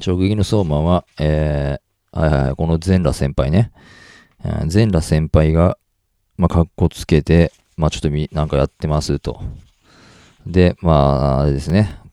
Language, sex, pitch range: Japanese, male, 75-100 Hz